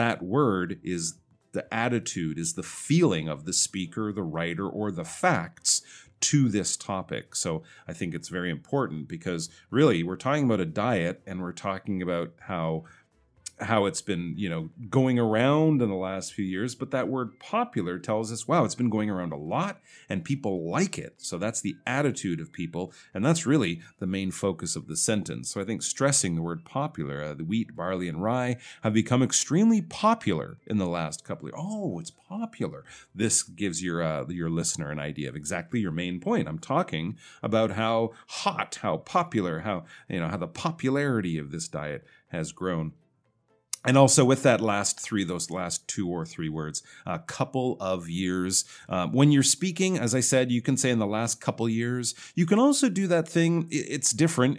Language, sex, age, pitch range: Chinese, male, 40-59, 90-135 Hz